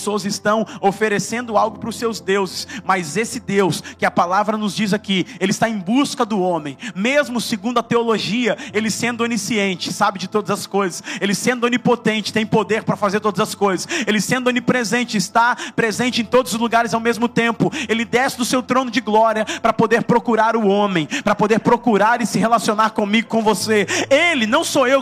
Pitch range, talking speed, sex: 225-285 Hz, 195 wpm, male